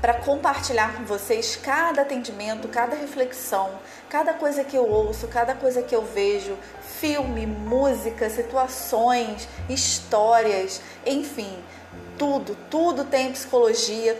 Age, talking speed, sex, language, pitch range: 30-49, 115 wpm, female, Portuguese, 220-265 Hz